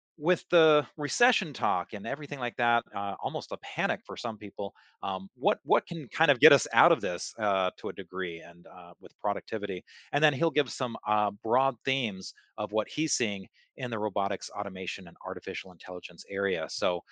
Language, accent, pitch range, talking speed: English, American, 105-140 Hz, 195 wpm